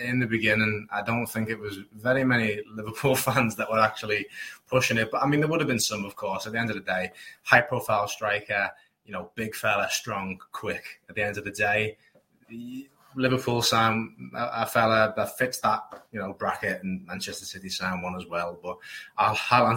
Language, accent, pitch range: English, British, 100-120 Hz